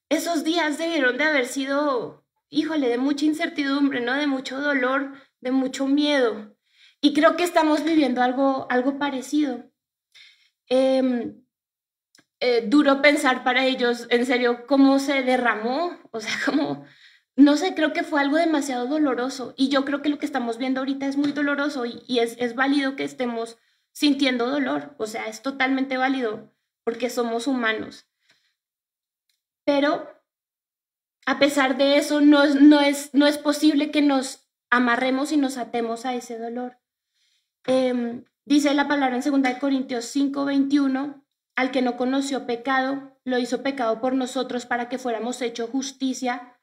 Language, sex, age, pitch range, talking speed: Spanish, female, 20-39, 245-290 Hz, 155 wpm